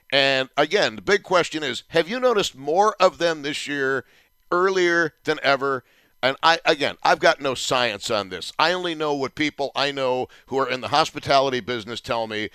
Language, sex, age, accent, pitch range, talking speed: English, male, 50-69, American, 130-170 Hz, 195 wpm